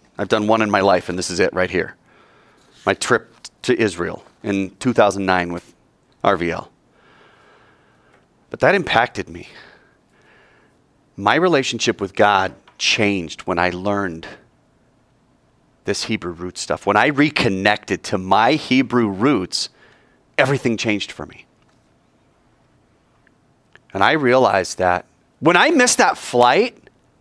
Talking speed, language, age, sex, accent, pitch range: 125 wpm, English, 30-49, male, American, 95-130 Hz